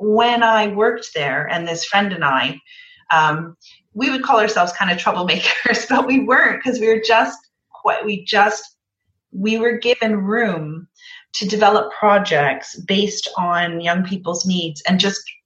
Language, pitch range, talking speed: English, 175-230 Hz, 160 wpm